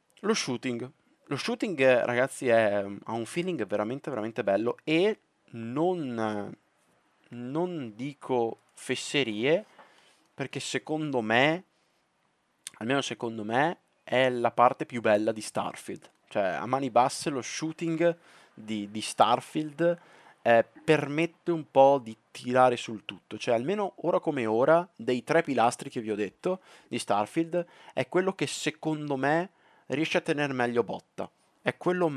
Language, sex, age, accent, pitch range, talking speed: Italian, male, 20-39, native, 115-160 Hz, 135 wpm